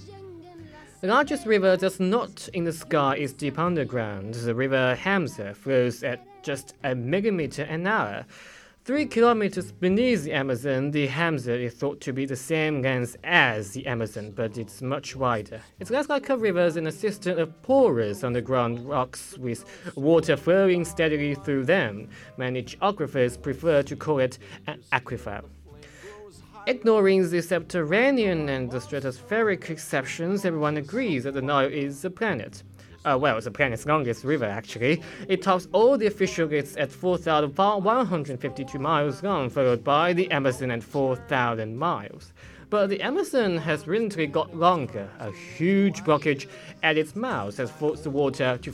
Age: 20-39